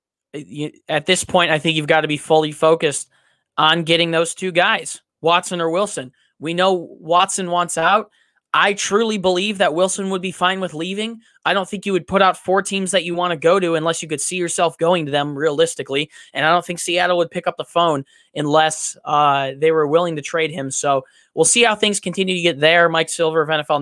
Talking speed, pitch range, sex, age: 225 wpm, 145-175 Hz, male, 20-39